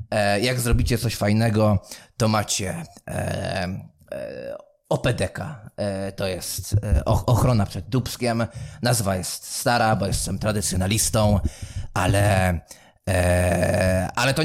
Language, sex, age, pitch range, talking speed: English, male, 20-39, 100-120 Hz, 110 wpm